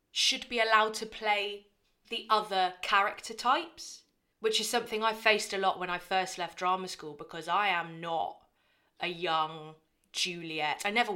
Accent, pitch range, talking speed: British, 180-250 Hz, 165 wpm